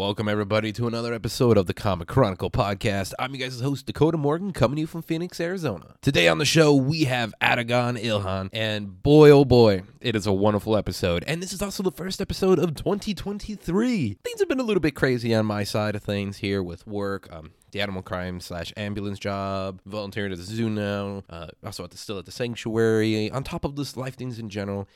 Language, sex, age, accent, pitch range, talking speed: English, male, 30-49, American, 105-150 Hz, 215 wpm